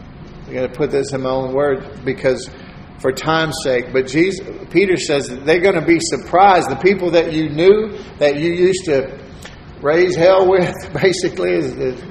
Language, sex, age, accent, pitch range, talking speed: English, male, 50-69, American, 135-170 Hz, 190 wpm